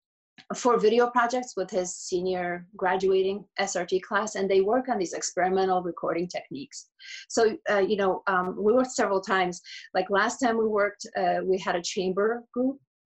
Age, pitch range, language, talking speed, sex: 30-49, 185-215 Hz, English, 170 wpm, female